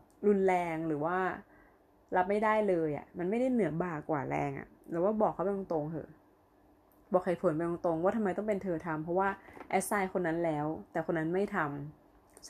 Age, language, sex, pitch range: 20-39, Thai, female, 160-205 Hz